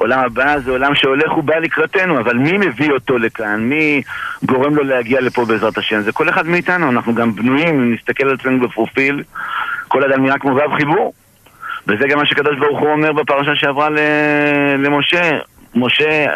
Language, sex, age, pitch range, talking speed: Hebrew, male, 50-69, 130-165 Hz, 170 wpm